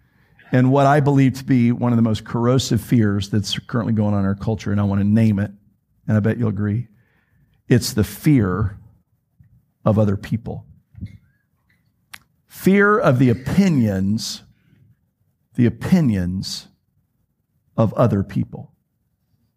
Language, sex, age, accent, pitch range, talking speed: English, male, 50-69, American, 115-145 Hz, 140 wpm